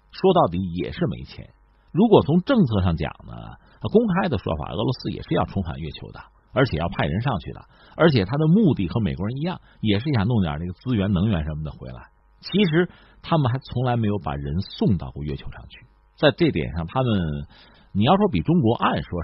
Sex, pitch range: male, 85-130 Hz